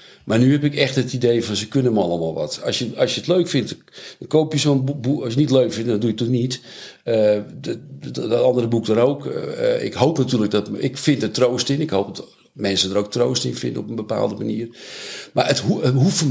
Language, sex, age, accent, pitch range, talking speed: Dutch, male, 50-69, Dutch, 105-135 Hz, 265 wpm